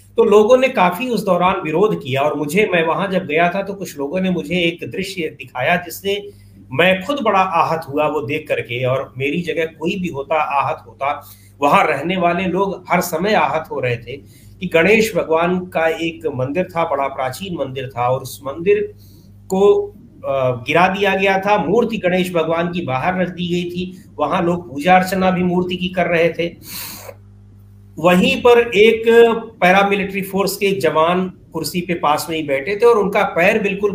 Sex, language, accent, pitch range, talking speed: male, Hindi, native, 140-195 Hz, 190 wpm